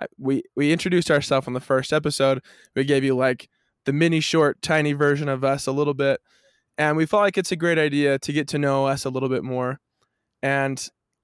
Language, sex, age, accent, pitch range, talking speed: English, male, 20-39, American, 130-155 Hz, 215 wpm